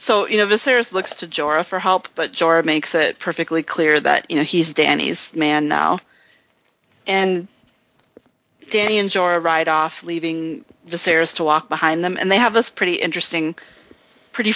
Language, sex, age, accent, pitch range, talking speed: English, female, 30-49, American, 160-205 Hz, 170 wpm